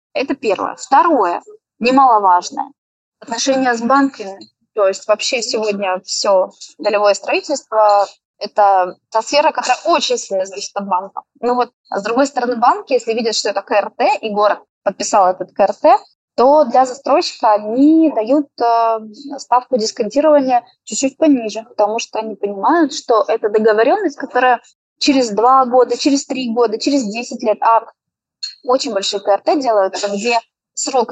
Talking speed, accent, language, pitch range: 140 wpm, native, Russian, 215-275 Hz